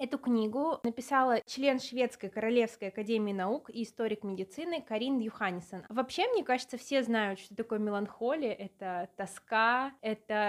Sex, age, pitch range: female, 20-39, 215-255 Hz